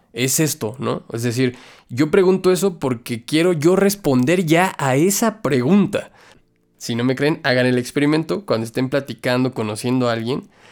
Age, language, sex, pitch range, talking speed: 20-39, Spanish, male, 115-140 Hz, 160 wpm